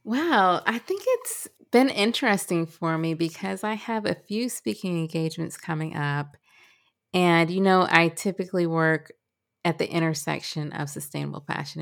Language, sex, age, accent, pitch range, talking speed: English, female, 20-39, American, 155-190 Hz, 145 wpm